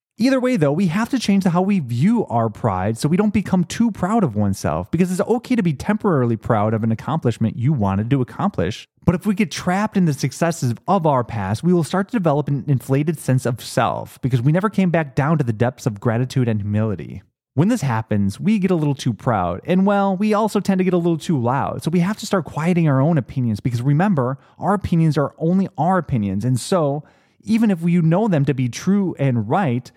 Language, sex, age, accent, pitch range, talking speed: English, male, 30-49, American, 125-180 Hz, 240 wpm